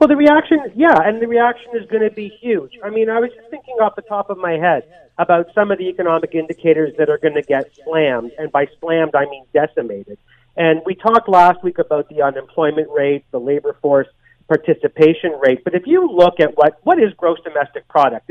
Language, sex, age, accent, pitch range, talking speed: English, male, 40-59, American, 160-225 Hz, 220 wpm